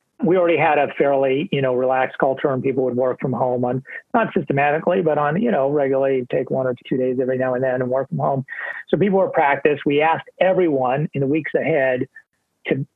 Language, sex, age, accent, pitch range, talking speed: English, male, 40-59, American, 135-170 Hz, 220 wpm